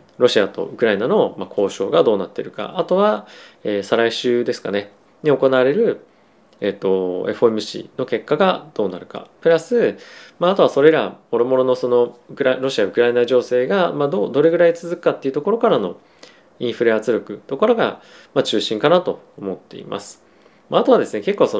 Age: 20-39